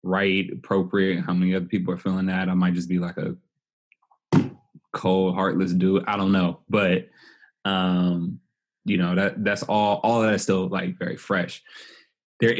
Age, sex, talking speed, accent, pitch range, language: 20-39, male, 165 wpm, American, 95-115 Hz, English